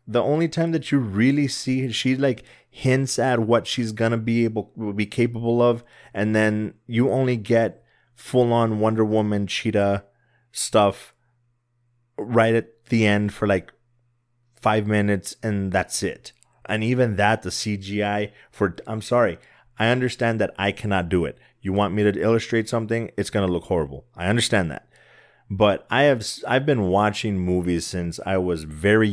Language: English